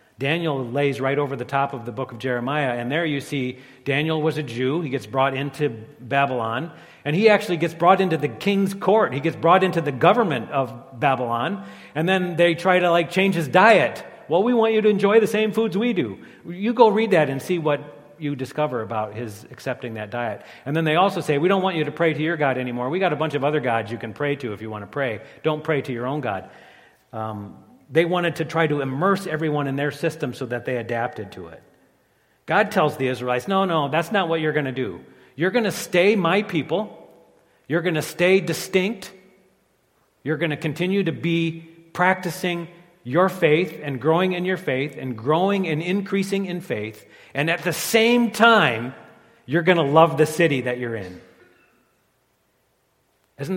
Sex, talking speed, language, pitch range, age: male, 210 wpm, English, 130-180 Hz, 40-59